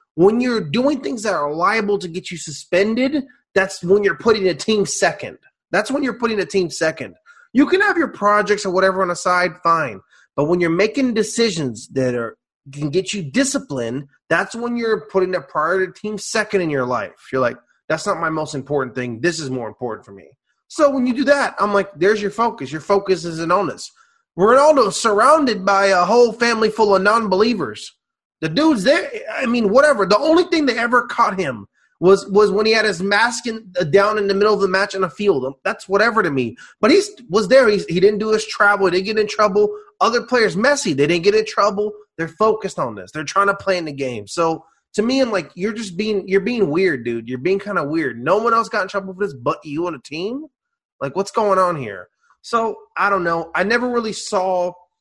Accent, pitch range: American, 180-235 Hz